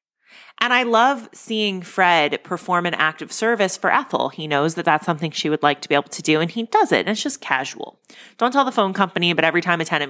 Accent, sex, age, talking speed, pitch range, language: American, female, 30-49, 255 wpm, 150-210 Hz, English